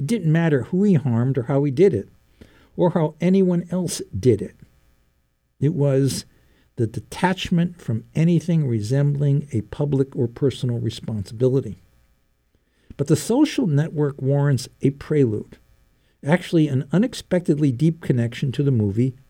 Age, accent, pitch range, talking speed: 60-79, American, 115-165 Hz, 135 wpm